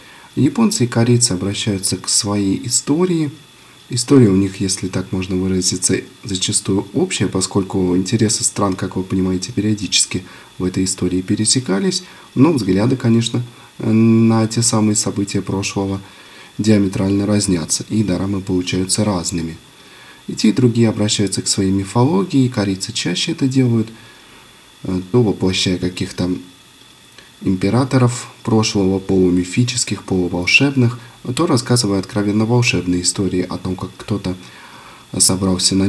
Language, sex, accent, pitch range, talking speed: Russian, male, native, 95-120 Hz, 120 wpm